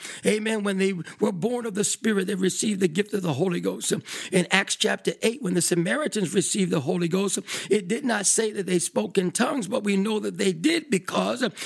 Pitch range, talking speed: 195-255 Hz, 220 wpm